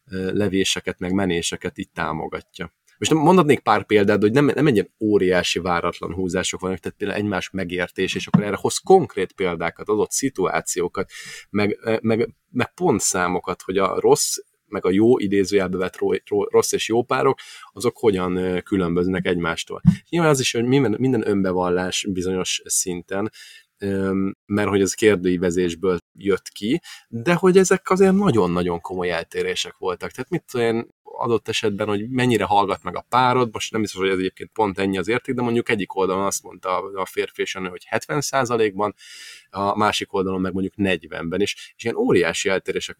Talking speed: 165 wpm